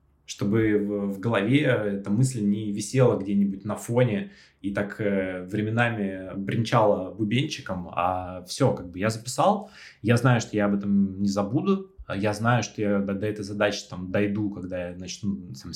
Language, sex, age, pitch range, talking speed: Russian, male, 20-39, 100-125 Hz, 160 wpm